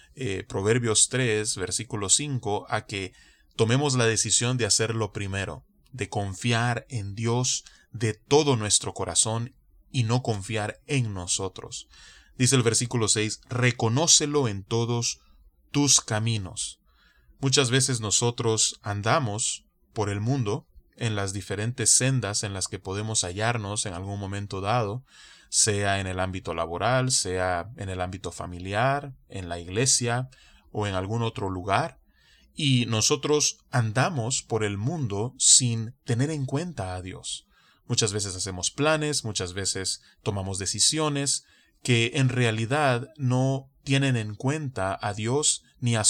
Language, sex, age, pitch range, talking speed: Spanish, male, 20-39, 100-130 Hz, 135 wpm